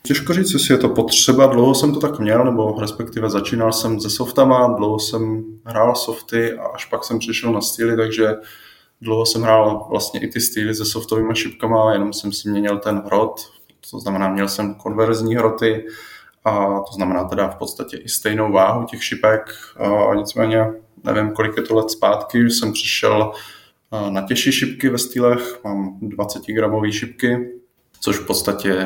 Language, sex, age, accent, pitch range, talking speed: Czech, male, 20-39, native, 105-115 Hz, 175 wpm